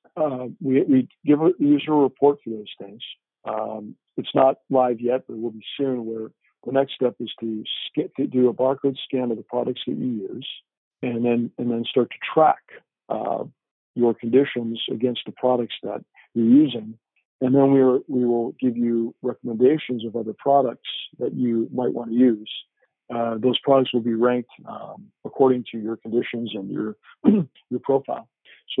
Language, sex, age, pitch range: English, male, 50-69, 115-130 Hz